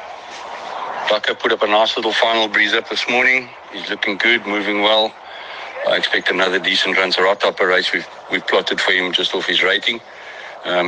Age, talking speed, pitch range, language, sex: 60-79, 195 wpm, 90-130 Hz, English, male